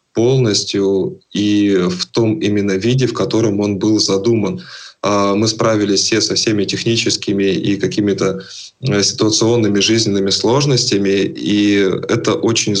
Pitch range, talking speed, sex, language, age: 100-120 Hz, 115 wpm, male, Russian, 20-39